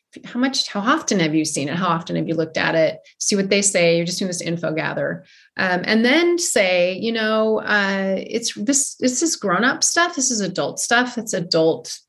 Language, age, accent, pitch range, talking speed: English, 30-49, American, 170-225 Hz, 225 wpm